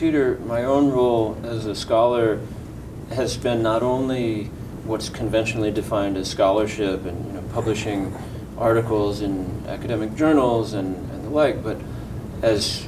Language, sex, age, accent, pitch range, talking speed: English, male, 40-59, American, 105-120 Hz, 130 wpm